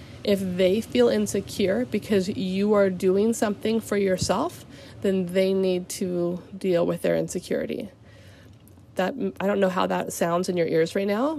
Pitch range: 175-210 Hz